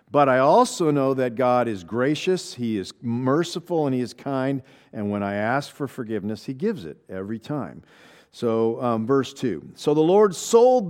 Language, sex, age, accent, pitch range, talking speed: English, male, 50-69, American, 125-165 Hz, 185 wpm